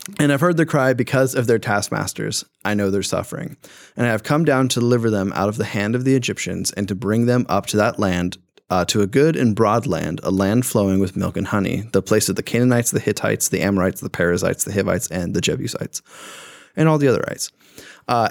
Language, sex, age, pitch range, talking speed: English, male, 20-39, 100-130 Hz, 235 wpm